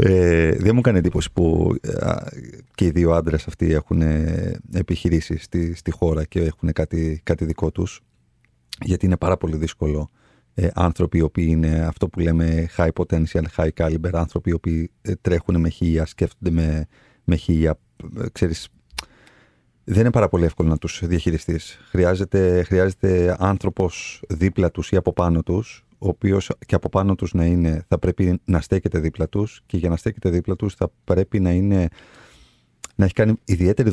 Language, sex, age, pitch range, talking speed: Greek, male, 30-49, 80-95 Hz, 170 wpm